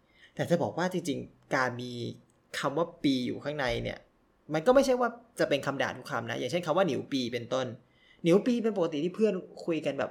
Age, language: 20-39, Thai